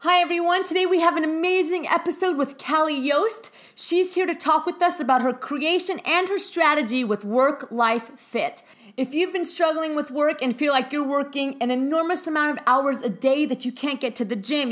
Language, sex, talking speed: English, female, 205 wpm